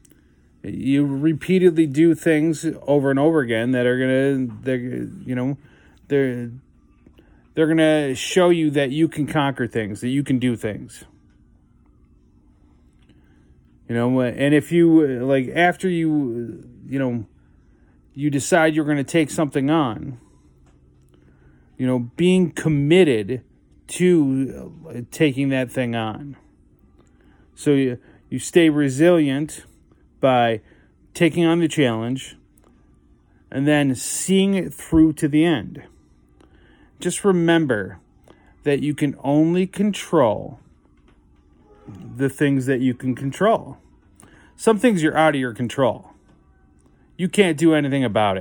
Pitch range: 100-160 Hz